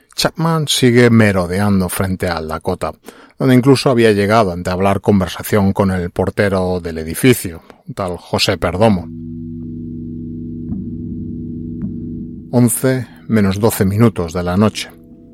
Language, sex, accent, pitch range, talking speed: Spanish, male, Spanish, 90-110 Hz, 110 wpm